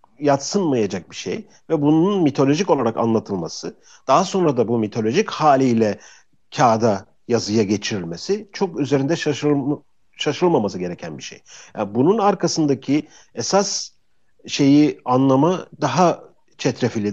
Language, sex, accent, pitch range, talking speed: Turkish, male, native, 110-150 Hz, 110 wpm